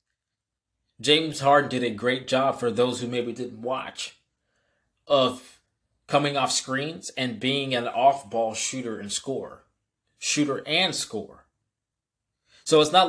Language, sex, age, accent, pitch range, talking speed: English, male, 20-39, American, 110-130 Hz, 135 wpm